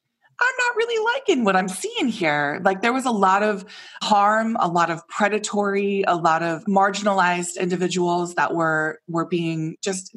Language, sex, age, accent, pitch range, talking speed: English, female, 20-39, American, 165-215 Hz, 170 wpm